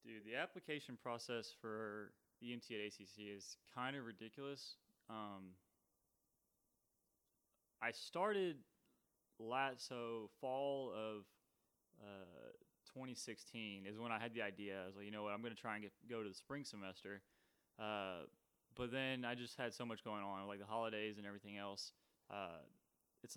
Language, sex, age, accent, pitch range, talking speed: English, male, 20-39, American, 105-130 Hz, 160 wpm